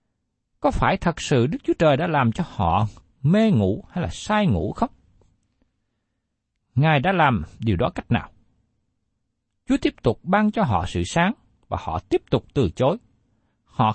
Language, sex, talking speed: Vietnamese, male, 170 wpm